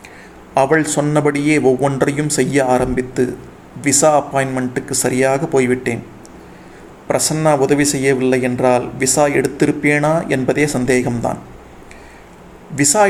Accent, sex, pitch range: native, male, 130-155 Hz